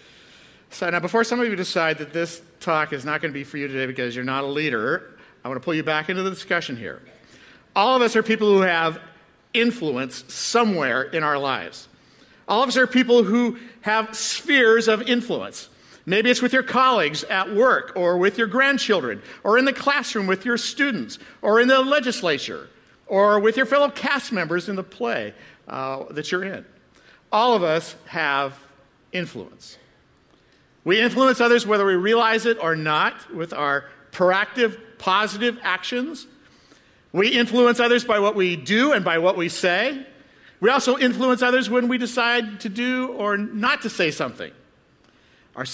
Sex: male